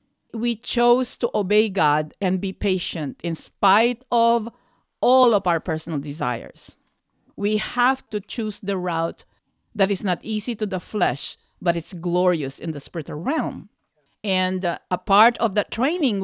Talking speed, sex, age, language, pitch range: 155 wpm, female, 50-69, English, 175-225 Hz